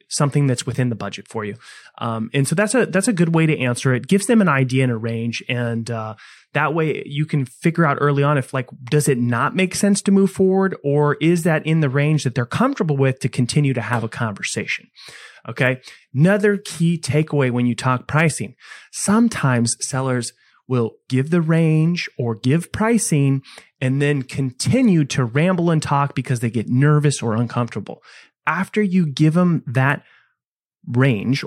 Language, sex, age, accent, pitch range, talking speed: English, male, 30-49, American, 125-155 Hz, 190 wpm